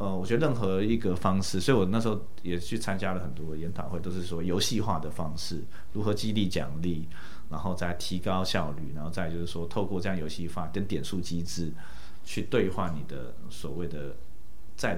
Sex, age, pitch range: male, 30-49, 80-105 Hz